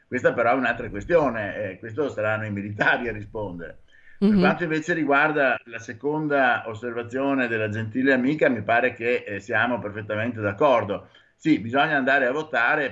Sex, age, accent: male, 50-69, native